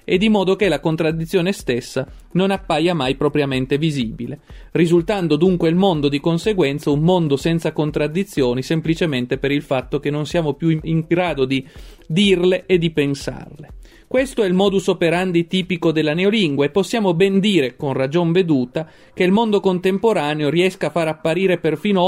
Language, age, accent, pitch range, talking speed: Italian, 40-59, native, 150-185 Hz, 165 wpm